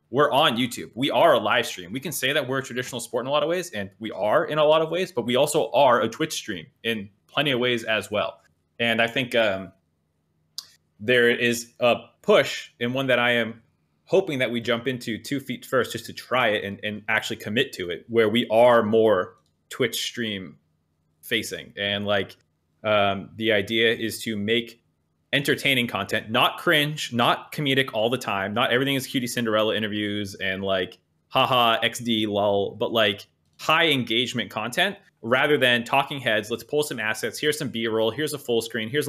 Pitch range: 105-130 Hz